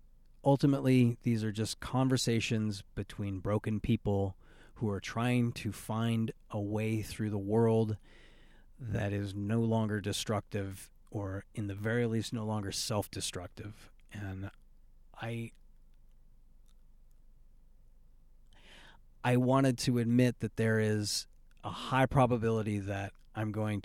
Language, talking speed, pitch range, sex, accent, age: English, 115 wpm, 100-115 Hz, male, American, 30-49